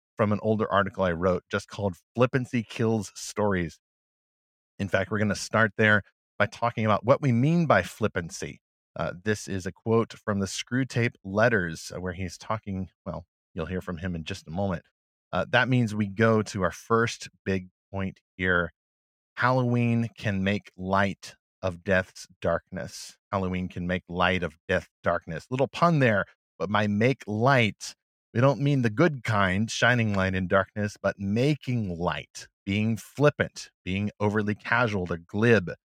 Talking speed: 165 wpm